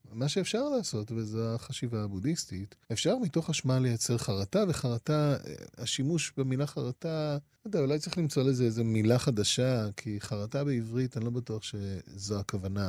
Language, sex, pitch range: Hebrew, male, 110-155 Hz